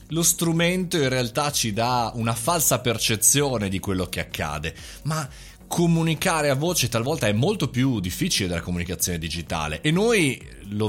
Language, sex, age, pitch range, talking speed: Italian, male, 30-49, 110-155 Hz, 155 wpm